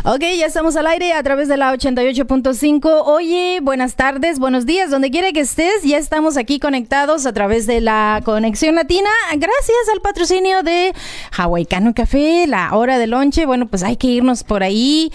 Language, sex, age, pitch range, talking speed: English, female, 30-49, 215-290 Hz, 180 wpm